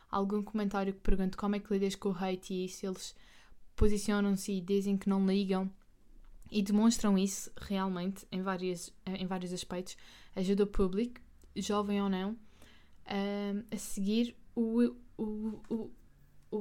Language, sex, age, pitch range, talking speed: Portuguese, female, 20-39, 190-215 Hz, 140 wpm